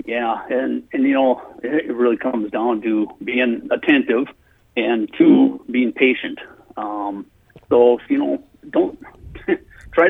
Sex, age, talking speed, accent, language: male, 50-69, 130 wpm, American, English